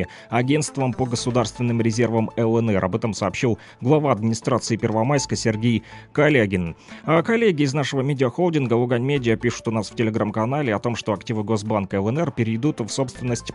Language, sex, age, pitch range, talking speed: Russian, male, 30-49, 110-135 Hz, 145 wpm